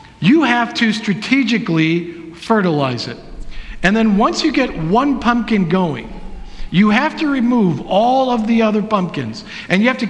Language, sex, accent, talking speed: English, male, American, 160 wpm